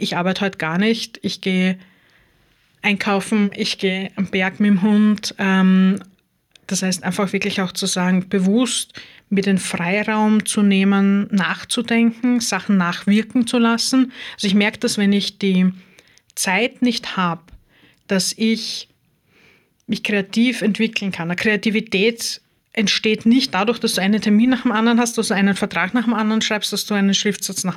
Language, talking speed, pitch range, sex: German, 160 wpm, 190-225 Hz, female